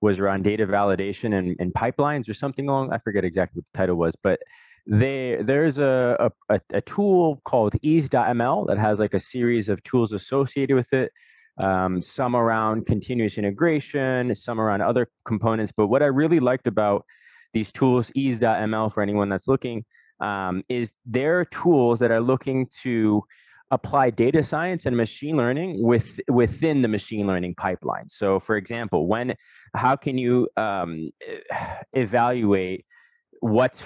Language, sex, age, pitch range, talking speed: English, male, 20-39, 105-135 Hz, 155 wpm